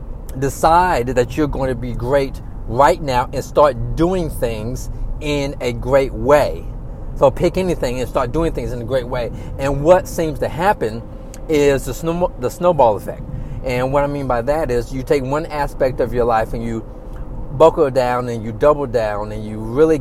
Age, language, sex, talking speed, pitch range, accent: 40-59, English, male, 190 wpm, 120-145 Hz, American